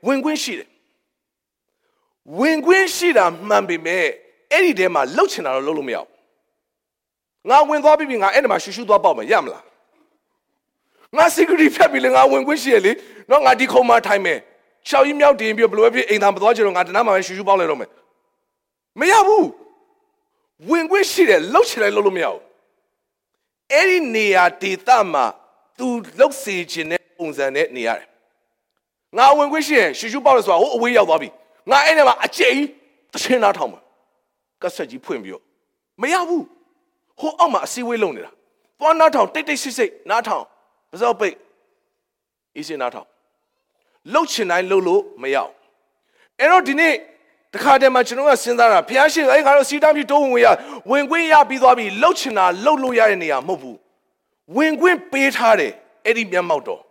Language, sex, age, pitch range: English, male, 40-59, 220-345 Hz